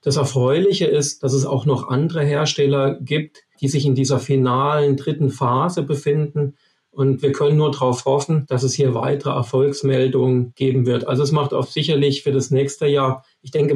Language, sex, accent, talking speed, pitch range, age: German, male, German, 185 wpm, 135-145 Hz, 40-59